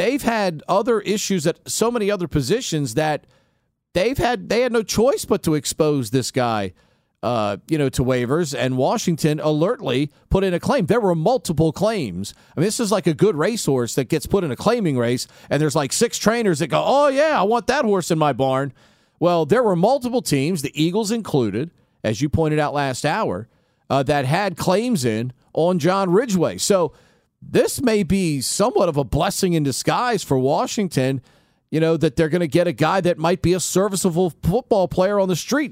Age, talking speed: 40-59, 200 wpm